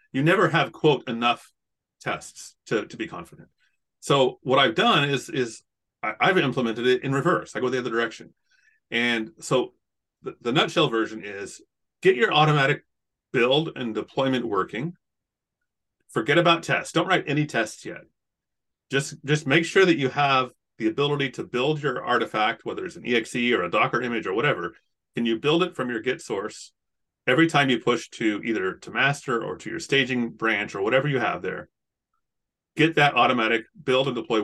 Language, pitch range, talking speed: English, 115-155 Hz, 180 wpm